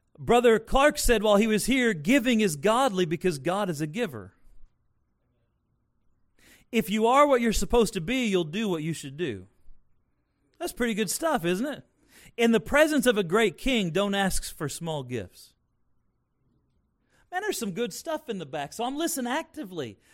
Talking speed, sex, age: 175 wpm, male, 40-59